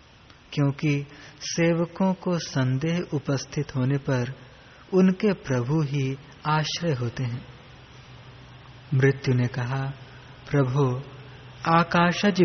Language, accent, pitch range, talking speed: Hindi, native, 130-165 Hz, 85 wpm